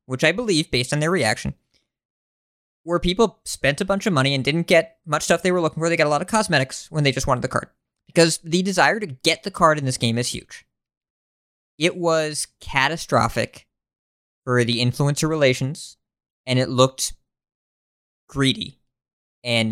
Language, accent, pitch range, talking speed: English, American, 120-160 Hz, 180 wpm